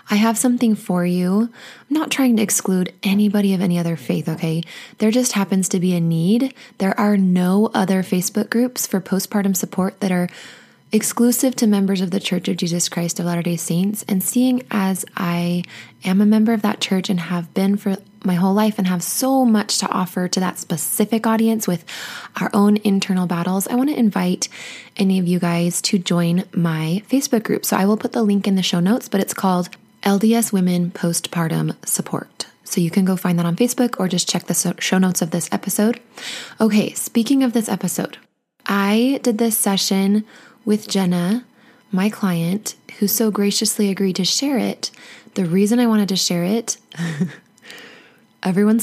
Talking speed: 190 wpm